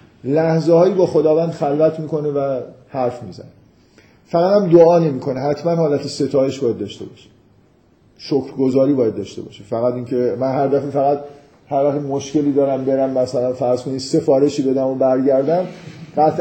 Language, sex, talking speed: Persian, male, 155 wpm